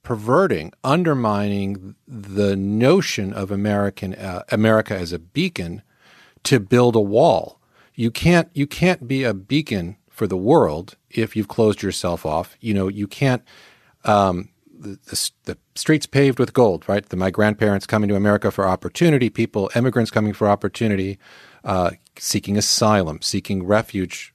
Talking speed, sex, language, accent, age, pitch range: 150 wpm, male, English, American, 40-59, 105-135 Hz